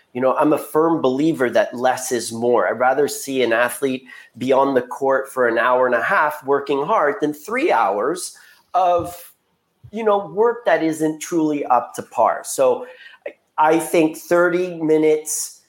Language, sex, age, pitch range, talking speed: English, male, 30-49, 120-150 Hz, 170 wpm